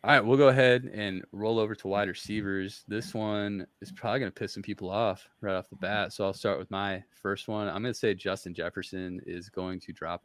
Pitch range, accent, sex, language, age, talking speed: 95-110 Hz, American, male, English, 20-39, 245 wpm